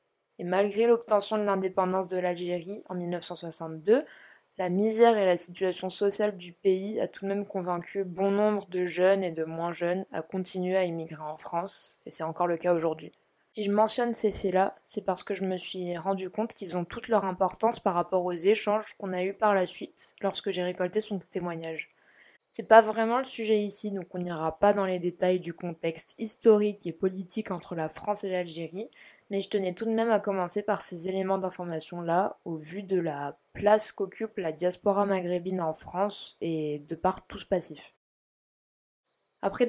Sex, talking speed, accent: female, 195 wpm, French